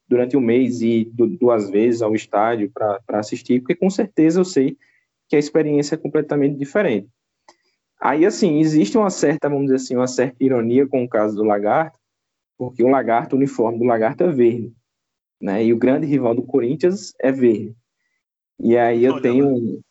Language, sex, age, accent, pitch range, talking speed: Portuguese, male, 20-39, Brazilian, 120-155 Hz, 180 wpm